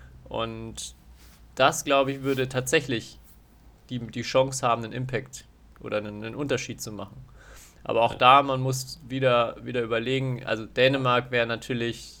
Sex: male